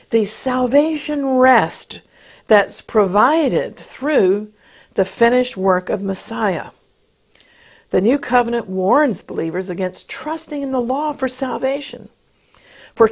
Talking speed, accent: 110 wpm, American